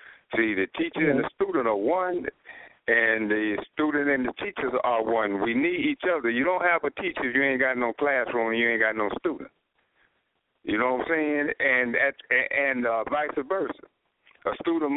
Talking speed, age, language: 200 wpm, 60-79, English